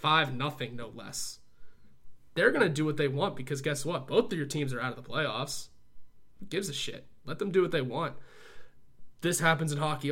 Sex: male